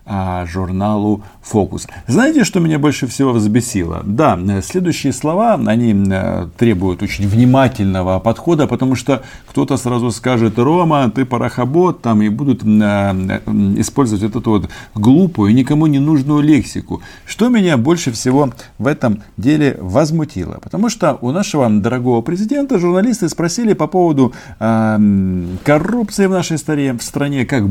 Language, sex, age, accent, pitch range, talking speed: Russian, male, 40-59, native, 100-150 Hz, 130 wpm